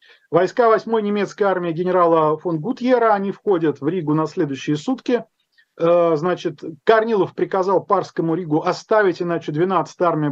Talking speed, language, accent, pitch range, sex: 135 wpm, Russian, native, 160-220 Hz, male